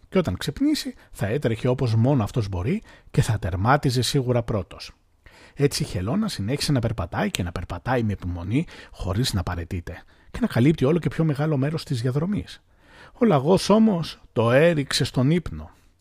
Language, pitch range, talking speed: Greek, 95-155 Hz, 170 wpm